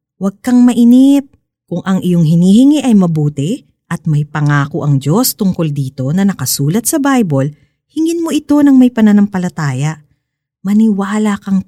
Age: 40-59